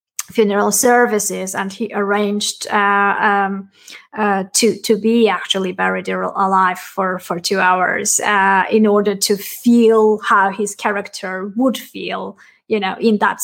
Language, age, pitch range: English, 20-39, 205-235 Hz